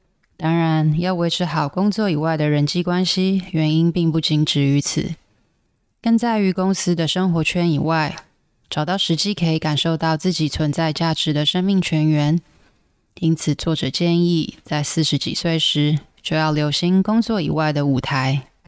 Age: 20-39